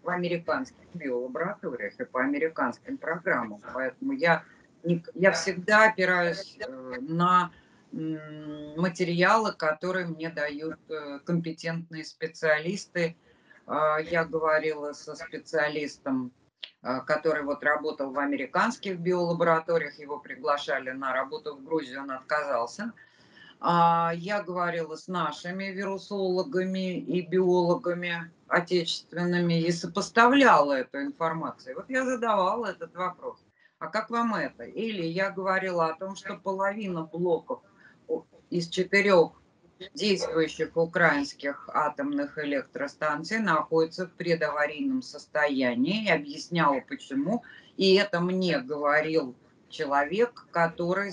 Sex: female